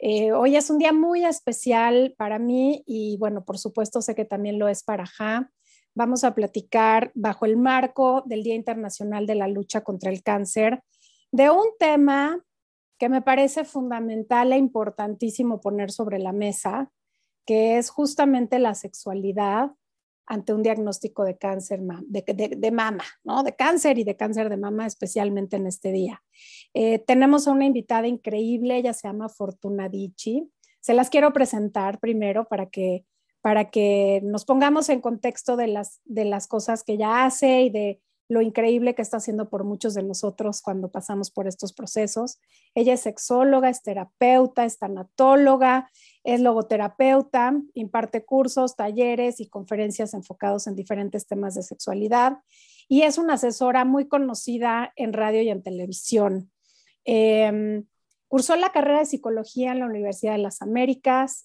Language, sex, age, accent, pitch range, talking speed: Spanish, female, 40-59, Mexican, 210-255 Hz, 160 wpm